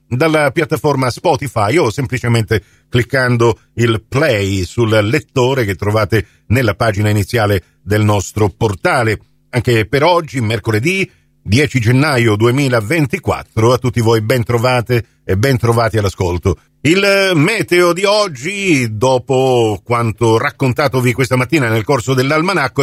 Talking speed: 120 wpm